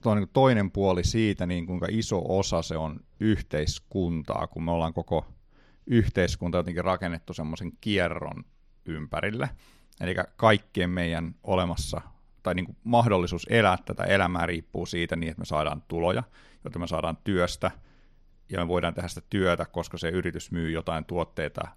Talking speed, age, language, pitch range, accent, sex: 145 wpm, 30-49, Finnish, 80-95 Hz, native, male